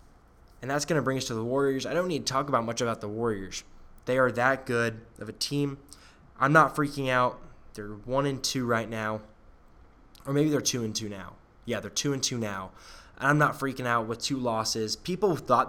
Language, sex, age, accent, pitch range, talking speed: English, male, 10-29, American, 110-130 Hz, 215 wpm